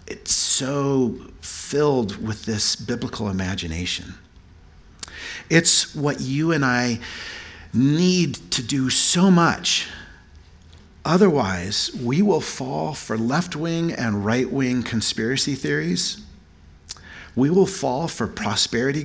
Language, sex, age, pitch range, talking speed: English, male, 50-69, 80-130 Hz, 100 wpm